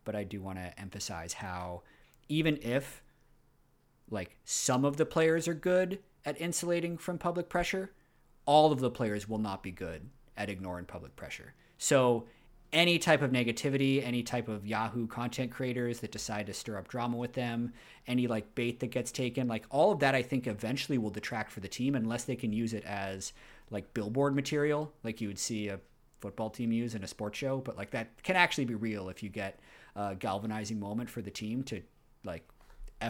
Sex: male